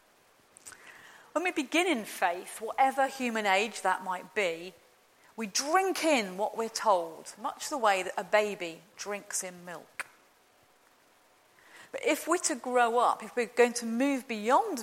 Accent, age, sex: British, 40-59, female